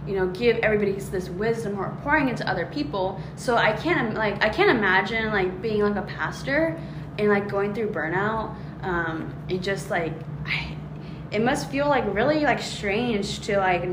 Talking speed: 175 wpm